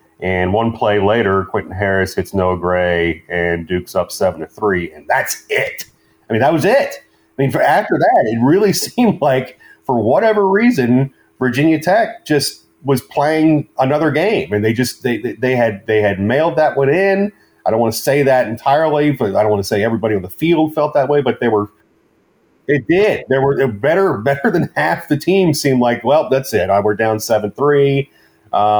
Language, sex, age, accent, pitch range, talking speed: English, male, 30-49, American, 100-135 Hz, 200 wpm